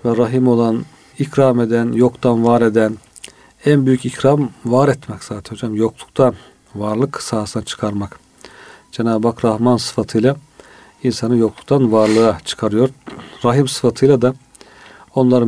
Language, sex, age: Turkish, male, 40-59